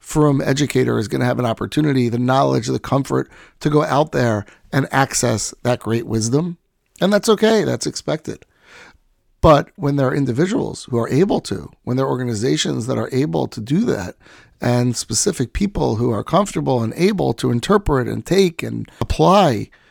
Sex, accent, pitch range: male, American, 120-155 Hz